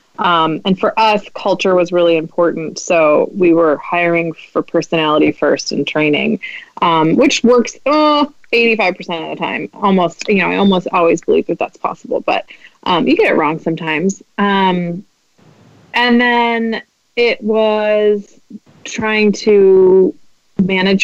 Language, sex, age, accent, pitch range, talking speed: English, female, 20-39, American, 165-195 Hz, 145 wpm